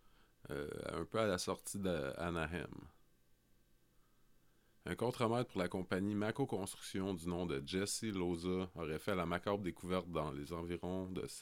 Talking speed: 150 wpm